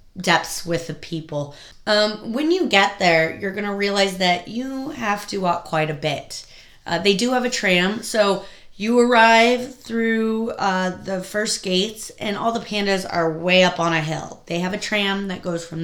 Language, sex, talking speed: English, female, 195 wpm